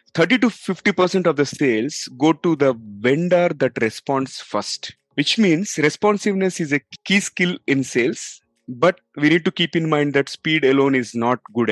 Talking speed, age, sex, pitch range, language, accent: 180 wpm, 30-49, male, 120-155 Hz, English, Indian